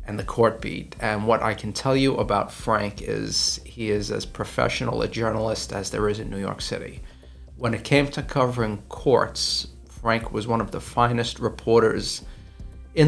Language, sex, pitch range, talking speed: English, male, 105-120 Hz, 185 wpm